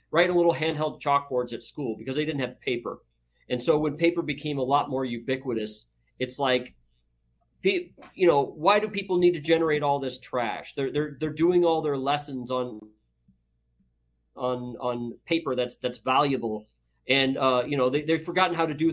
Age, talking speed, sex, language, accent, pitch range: 30-49, 185 wpm, male, English, American, 125-175 Hz